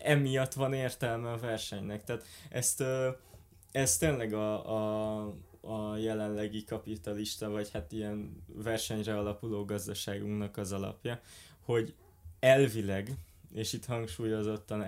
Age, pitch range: 20-39, 100-120 Hz